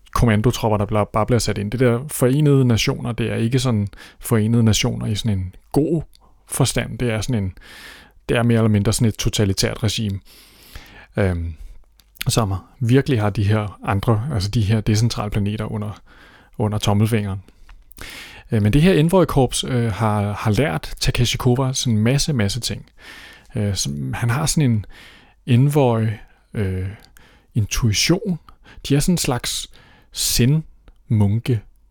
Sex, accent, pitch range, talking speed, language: male, native, 105-130 Hz, 135 wpm, Danish